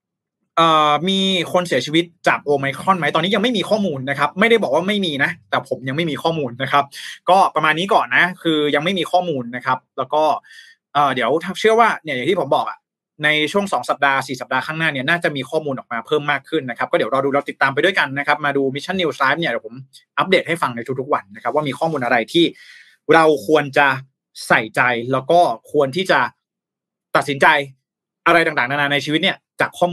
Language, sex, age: Thai, male, 20-39